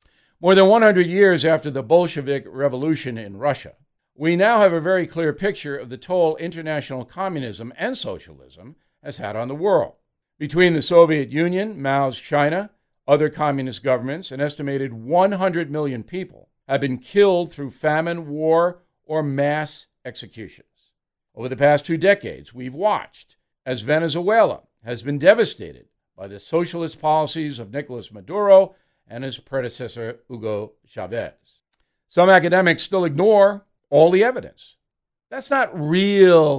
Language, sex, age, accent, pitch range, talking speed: English, male, 60-79, American, 130-175 Hz, 140 wpm